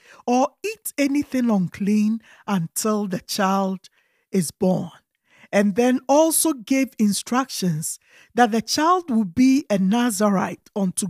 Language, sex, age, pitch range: English, male, 50-69, 195-255 Hz